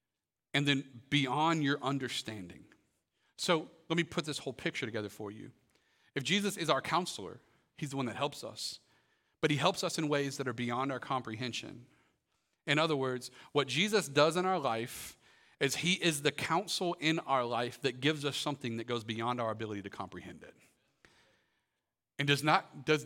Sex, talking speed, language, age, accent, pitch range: male, 180 wpm, English, 40-59, American, 125-165 Hz